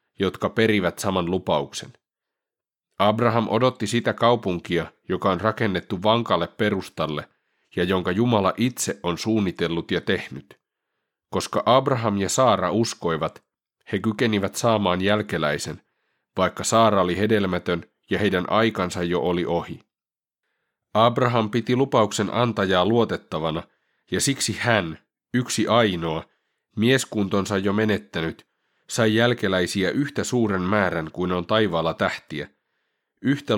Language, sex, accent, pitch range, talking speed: Finnish, male, native, 95-115 Hz, 115 wpm